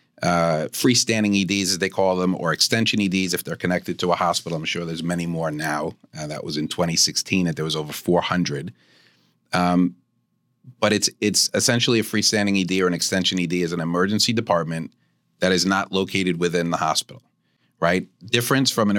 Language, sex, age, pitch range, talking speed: English, male, 40-59, 85-105 Hz, 185 wpm